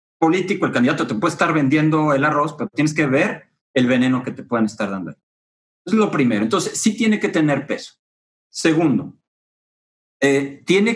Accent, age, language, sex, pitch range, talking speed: Mexican, 40-59, English, male, 135-180 Hz, 175 wpm